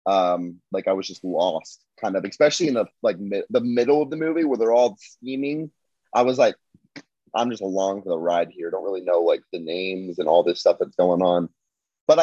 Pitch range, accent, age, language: 95-120 Hz, American, 30-49, English